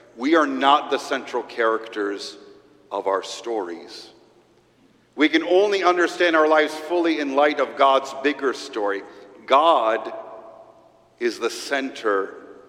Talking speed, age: 125 wpm, 50-69